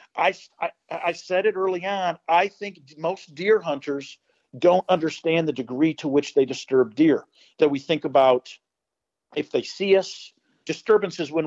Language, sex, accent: English, male, American